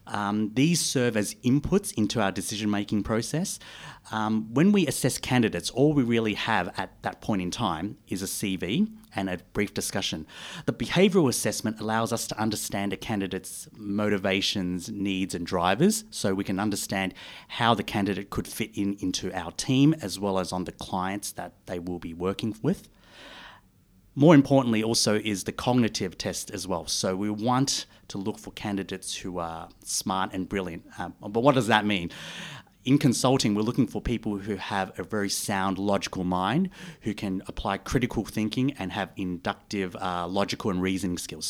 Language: English